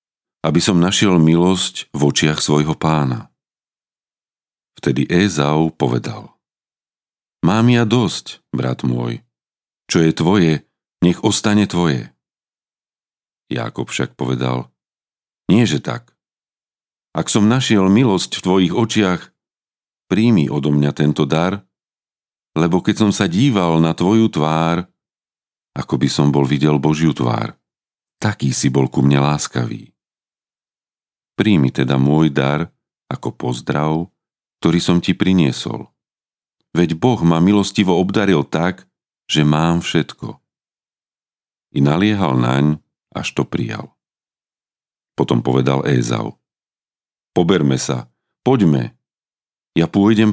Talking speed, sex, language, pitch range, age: 110 wpm, male, Slovak, 70-95 Hz, 40-59